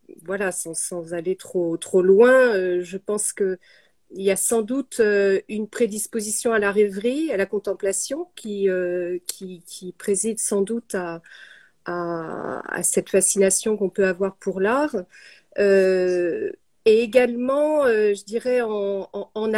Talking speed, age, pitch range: 155 wpm, 40-59, 195-255 Hz